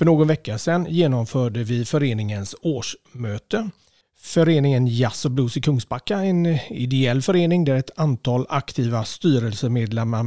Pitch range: 115-155 Hz